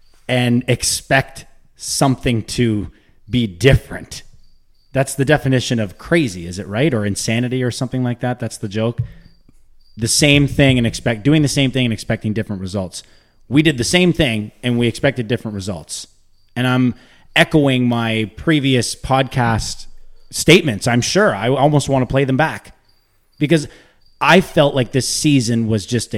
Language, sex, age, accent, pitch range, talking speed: English, male, 30-49, American, 110-155 Hz, 160 wpm